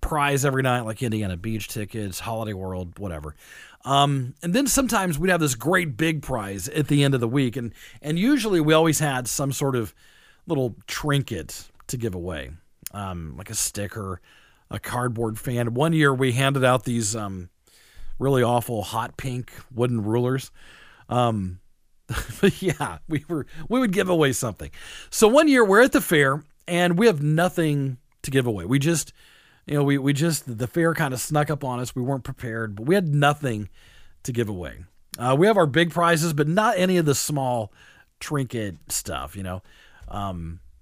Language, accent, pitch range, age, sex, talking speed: English, American, 105-160 Hz, 40-59, male, 185 wpm